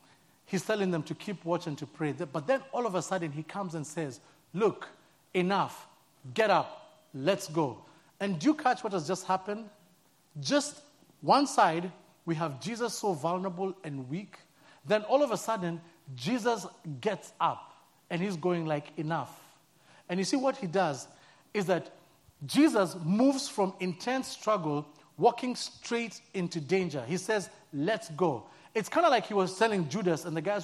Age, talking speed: 40-59, 170 wpm